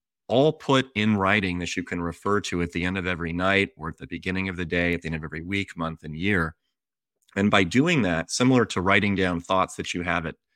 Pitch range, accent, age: 85-105 Hz, American, 30-49